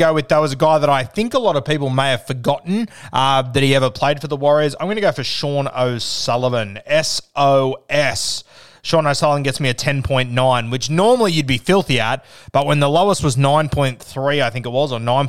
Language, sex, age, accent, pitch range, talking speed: English, male, 30-49, Australian, 120-150 Hz, 220 wpm